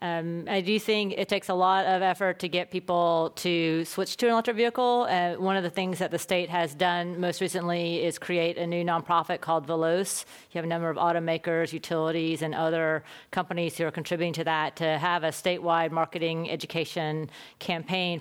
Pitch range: 165-200 Hz